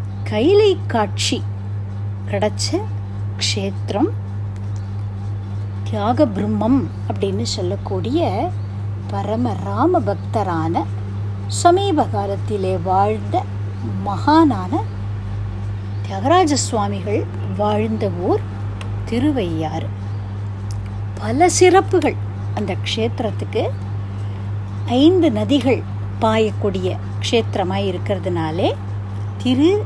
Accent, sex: native, female